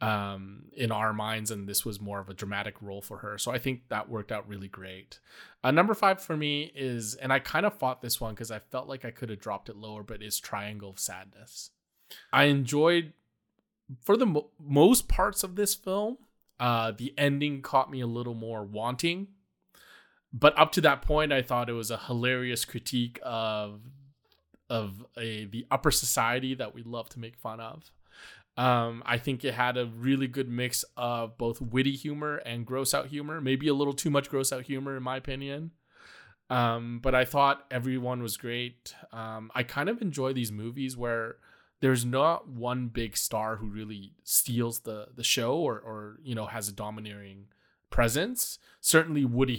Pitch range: 110-140 Hz